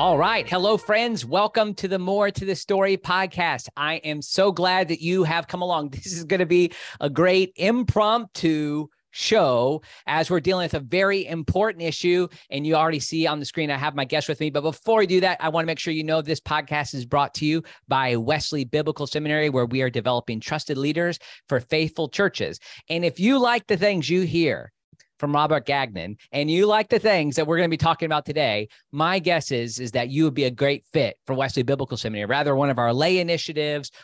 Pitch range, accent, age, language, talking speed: 140-175 Hz, American, 40-59, English, 225 wpm